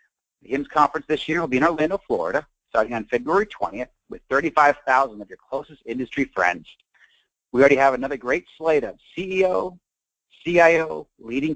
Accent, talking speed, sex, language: American, 160 wpm, male, English